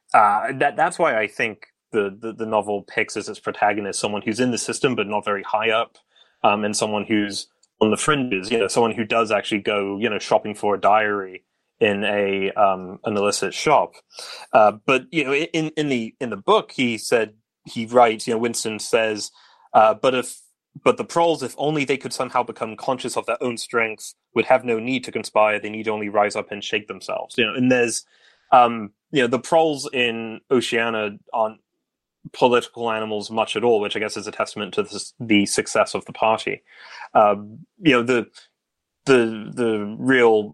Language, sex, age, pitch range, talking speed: English, male, 30-49, 105-115 Hz, 205 wpm